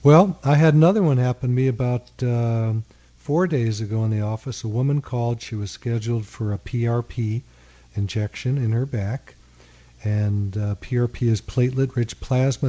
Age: 50-69